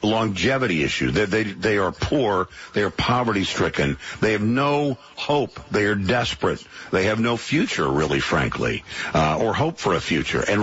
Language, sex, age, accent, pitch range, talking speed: English, male, 50-69, American, 95-135 Hz, 175 wpm